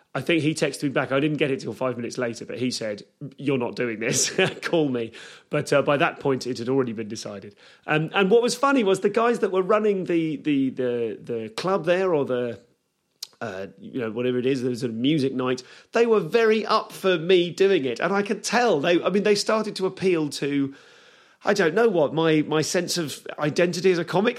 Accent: British